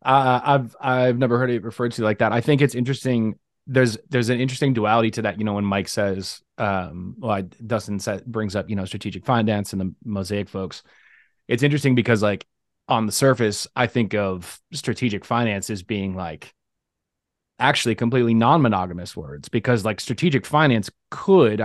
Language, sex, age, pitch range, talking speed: English, male, 20-39, 100-125 Hz, 180 wpm